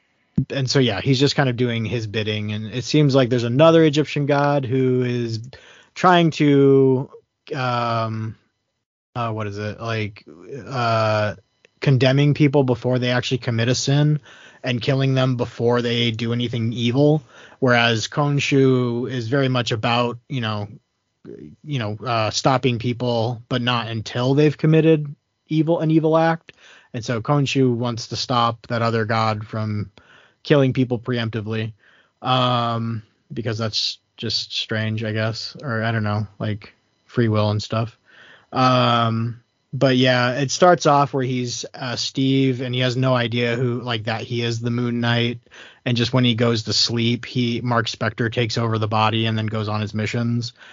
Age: 30-49